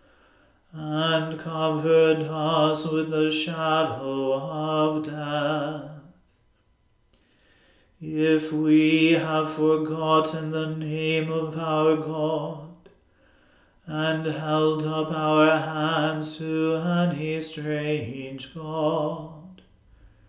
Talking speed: 75 wpm